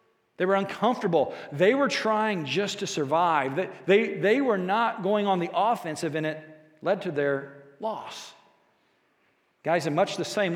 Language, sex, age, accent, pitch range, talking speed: English, male, 40-59, American, 165-215 Hz, 160 wpm